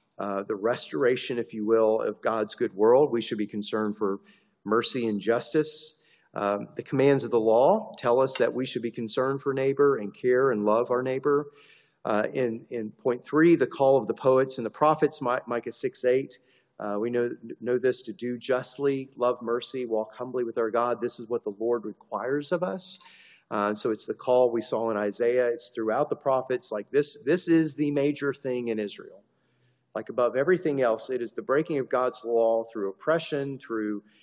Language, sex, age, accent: English, male, 40-59, American